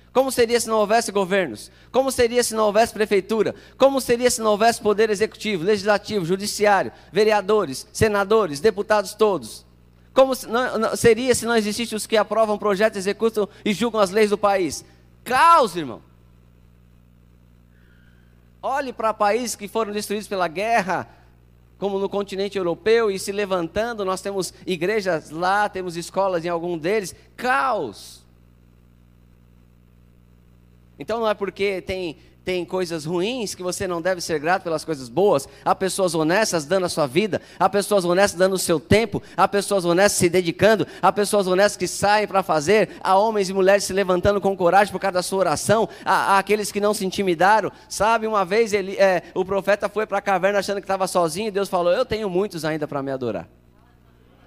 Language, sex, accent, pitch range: Portuguese, male, Brazilian, 165-210 Hz